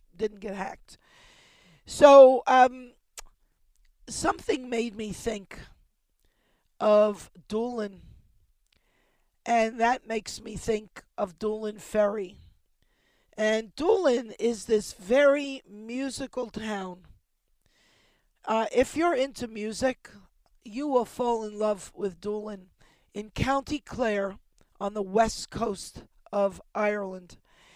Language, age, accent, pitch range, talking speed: English, 40-59, American, 205-240 Hz, 100 wpm